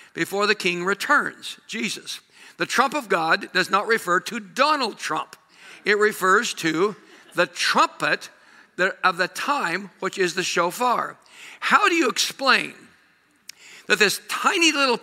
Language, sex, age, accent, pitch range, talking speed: English, male, 60-79, American, 200-280 Hz, 140 wpm